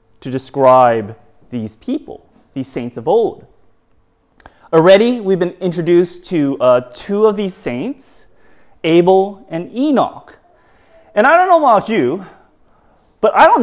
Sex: male